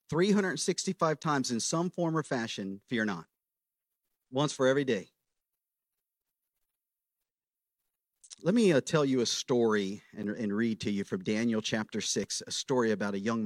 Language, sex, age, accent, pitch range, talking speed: English, male, 40-59, American, 120-165 Hz, 150 wpm